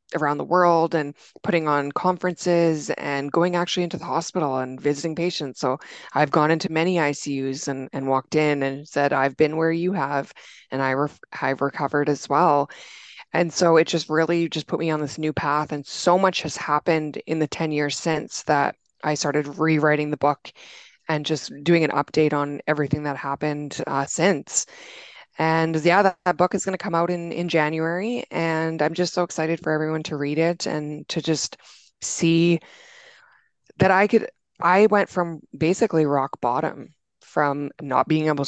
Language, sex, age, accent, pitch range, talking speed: English, female, 20-39, American, 145-175 Hz, 185 wpm